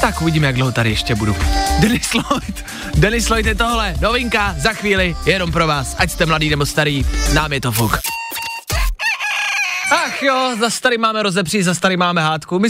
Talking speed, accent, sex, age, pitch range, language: 190 wpm, native, male, 20-39, 130-185 Hz, Czech